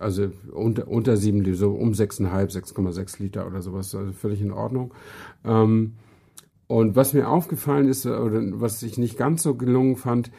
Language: German